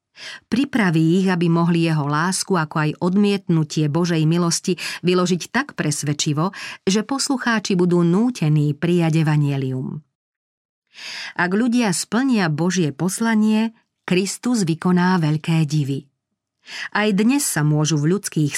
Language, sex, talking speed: Slovak, female, 115 wpm